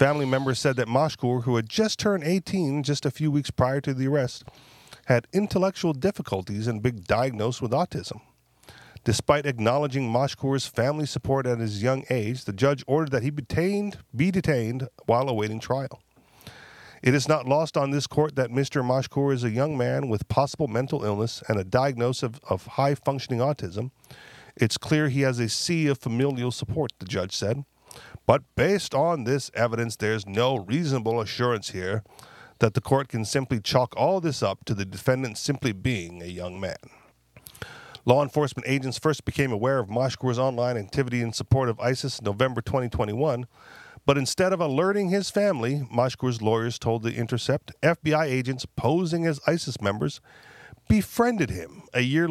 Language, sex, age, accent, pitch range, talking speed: English, male, 40-59, American, 120-145 Hz, 170 wpm